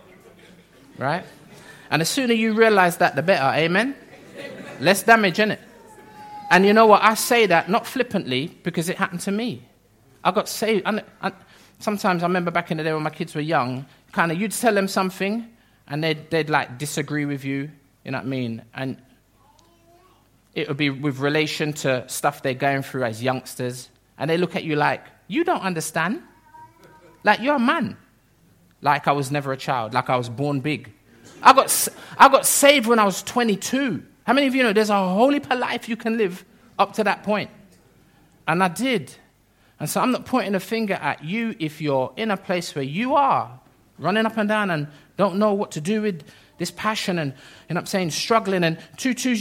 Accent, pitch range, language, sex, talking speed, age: British, 145-215 Hz, English, male, 200 wpm, 20-39